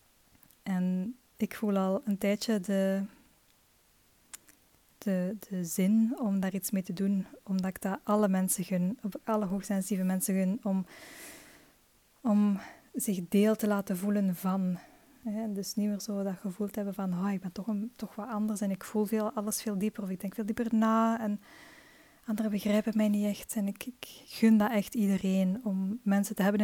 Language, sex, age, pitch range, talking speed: Dutch, female, 20-39, 195-220 Hz, 175 wpm